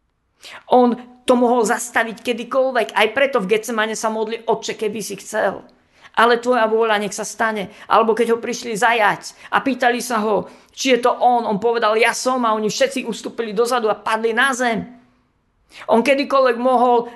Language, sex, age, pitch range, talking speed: Slovak, female, 50-69, 215-245 Hz, 175 wpm